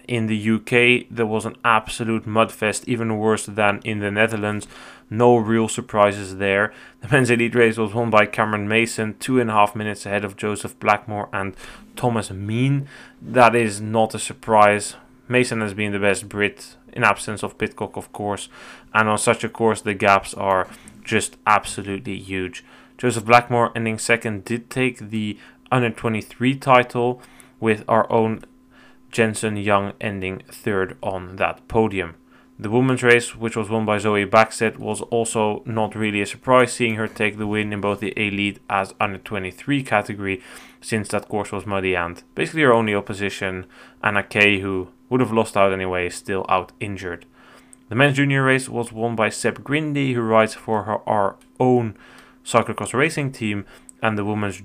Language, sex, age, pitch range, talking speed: English, male, 20-39, 100-120 Hz, 170 wpm